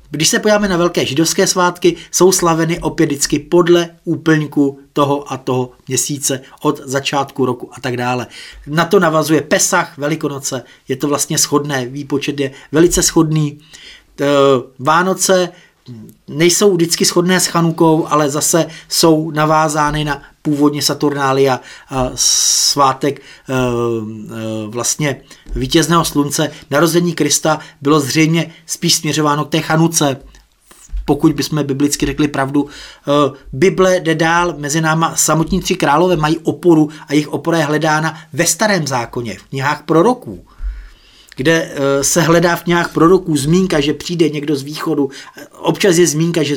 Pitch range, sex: 140-170 Hz, male